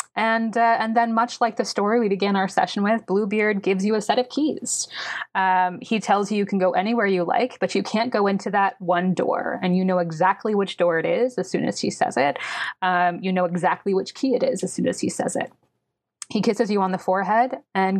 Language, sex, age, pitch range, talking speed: English, female, 20-39, 180-220 Hz, 245 wpm